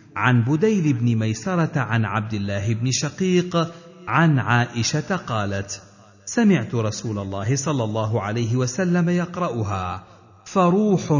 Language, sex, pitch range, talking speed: Arabic, male, 110-150 Hz, 115 wpm